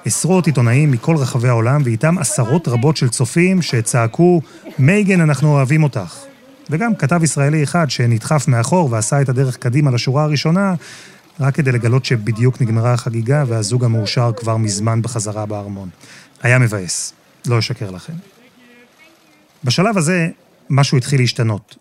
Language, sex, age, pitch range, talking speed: Hebrew, male, 30-49, 120-165 Hz, 135 wpm